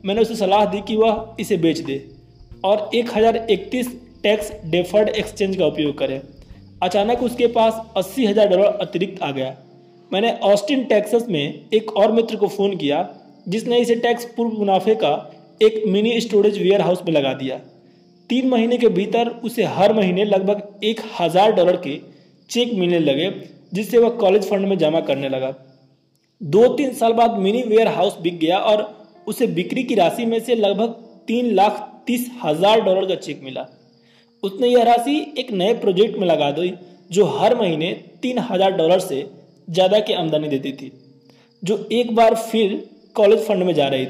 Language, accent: Hindi, native